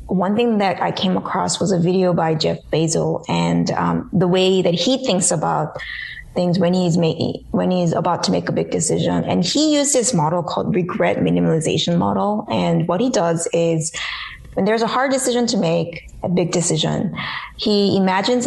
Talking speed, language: 190 wpm, English